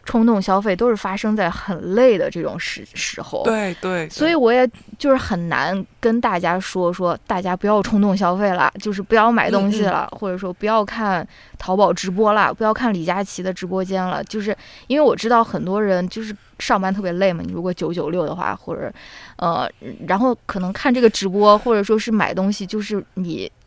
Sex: female